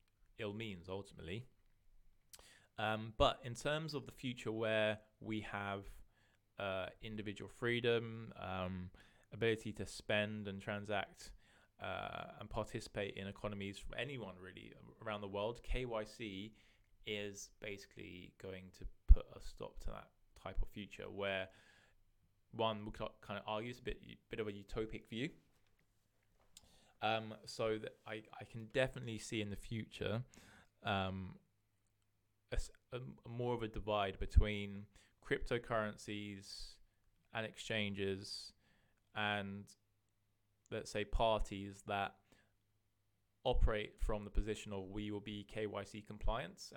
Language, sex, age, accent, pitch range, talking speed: English, male, 20-39, British, 100-110 Hz, 125 wpm